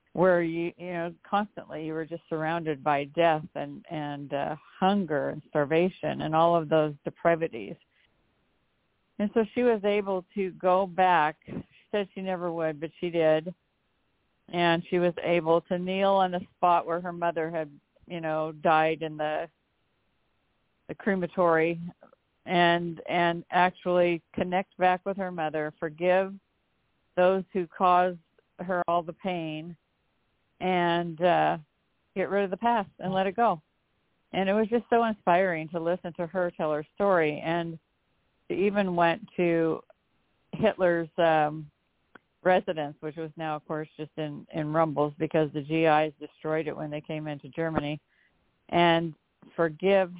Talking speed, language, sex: 150 wpm, English, female